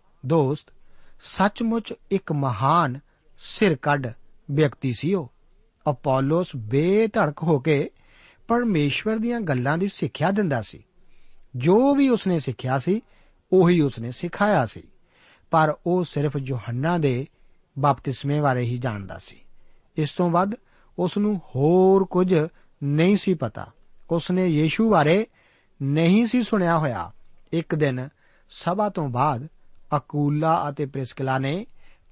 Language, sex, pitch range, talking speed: Punjabi, male, 135-185 Hz, 95 wpm